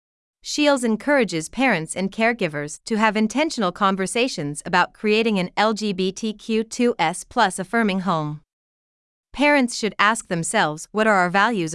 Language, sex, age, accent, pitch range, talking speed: English, female, 30-49, American, 175-230 Hz, 115 wpm